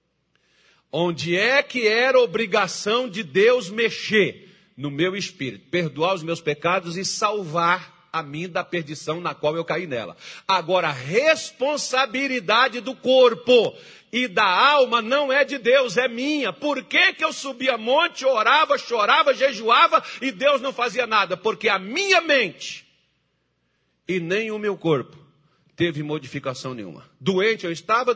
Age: 50-69